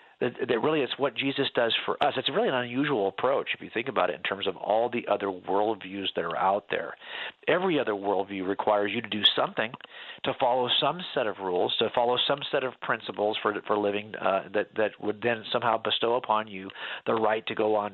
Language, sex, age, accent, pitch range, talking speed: English, male, 40-59, American, 105-145 Hz, 220 wpm